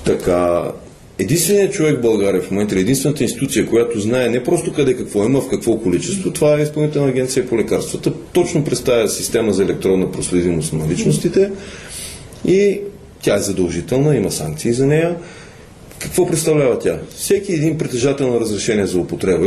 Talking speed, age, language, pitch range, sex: 155 wpm, 40-59, Bulgarian, 105-160 Hz, male